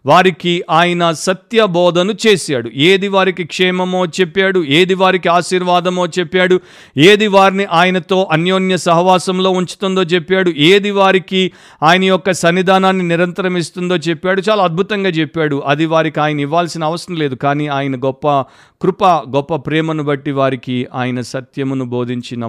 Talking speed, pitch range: 130 wpm, 135-185 Hz